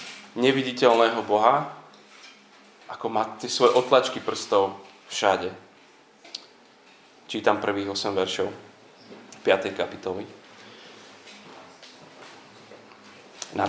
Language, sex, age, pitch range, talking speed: Slovak, male, 30-49, 100-125 Hz, 70 wpm